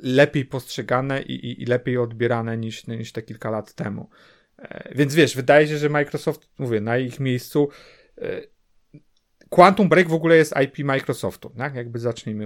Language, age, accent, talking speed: Polish, 40-59, native, 155 wpm